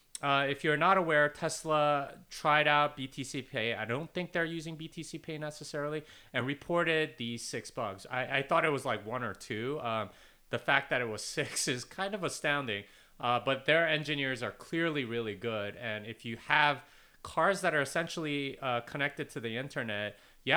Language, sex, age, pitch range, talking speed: English, male, 30-49, 110-155 Hz, 190 wpm